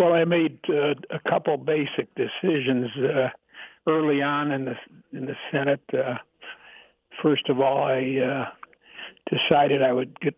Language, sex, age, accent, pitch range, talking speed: English, male, 60-79, American, 130-150 Hz, 150 wpm